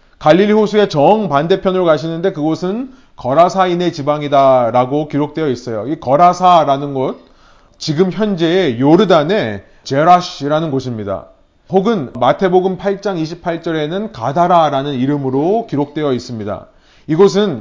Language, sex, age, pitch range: Korean, male, 30-49, 140-195 Hz